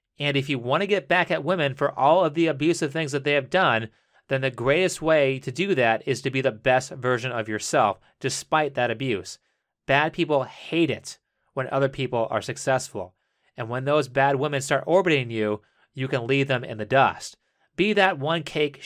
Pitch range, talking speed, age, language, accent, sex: 125-155 Hz, 205 wpm, 30-49, English, American, male